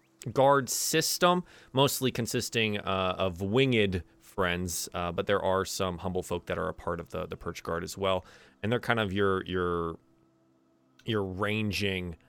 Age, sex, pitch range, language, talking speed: 30-49, male, 90-120 Hz, English, 165 wpm